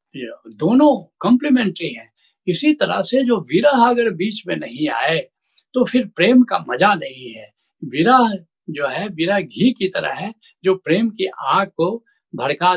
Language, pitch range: Hindi, 165-235 Hz